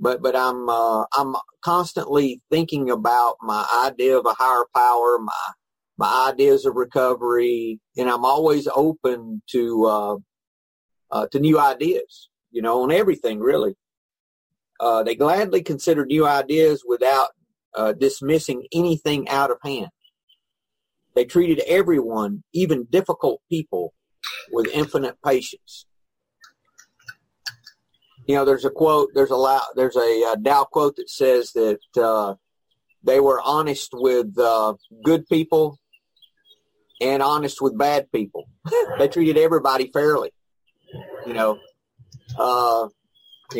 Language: English